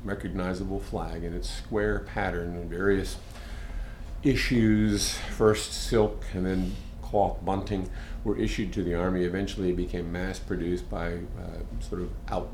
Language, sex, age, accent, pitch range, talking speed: English, male, 50-69, American, 85-100 Hz, 140 wpm